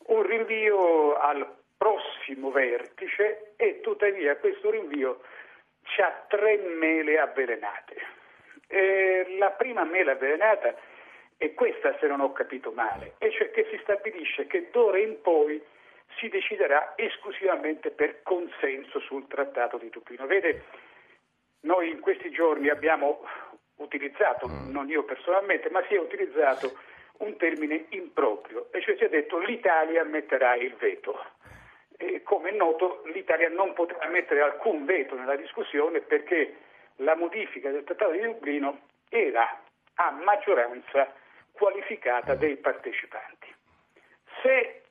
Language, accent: Italian, native